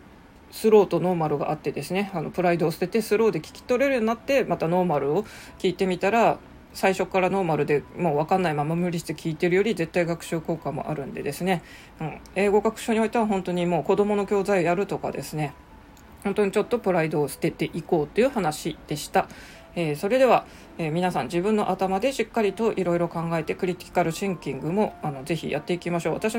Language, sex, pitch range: Japanese, female, 165-215 Hz